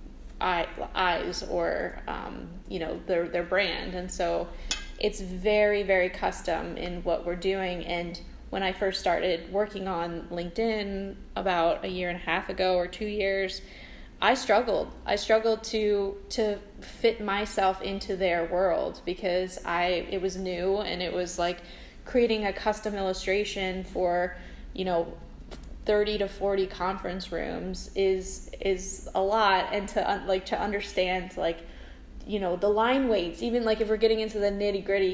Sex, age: female, 10-29